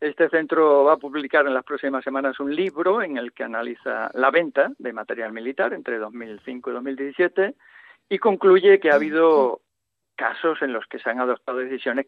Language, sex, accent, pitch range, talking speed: Spanish, male, Spanish, 135-185 Hz, 185 wpm